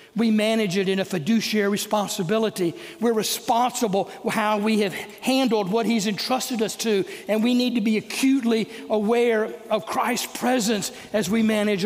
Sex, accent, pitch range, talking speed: male, American, 200-235 Hz, 155 wpm